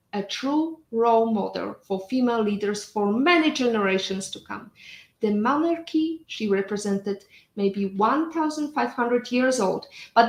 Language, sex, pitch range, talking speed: English, female, 205-315 Hz, 130 wpm